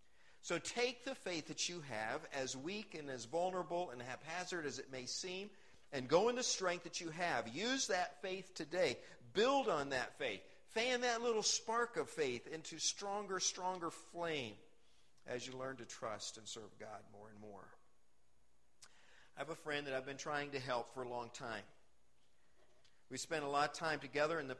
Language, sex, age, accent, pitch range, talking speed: English, male, 50-69, American, 120-180 Hz, 190 wpm